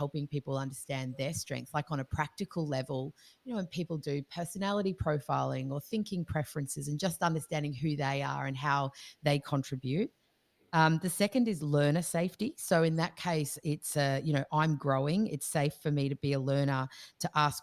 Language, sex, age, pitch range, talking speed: English, female, 30-49, 135-165 Hz, 190 wpm